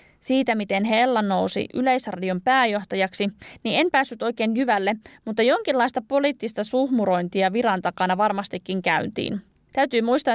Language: Finnish